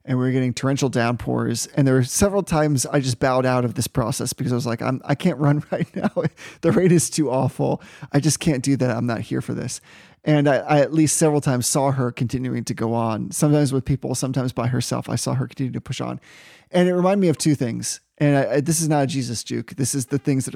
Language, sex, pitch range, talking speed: English, male, 125-150 Hz, 265 wpm